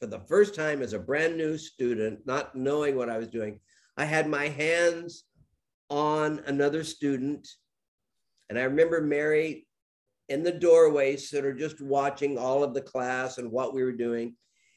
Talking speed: 170 wpm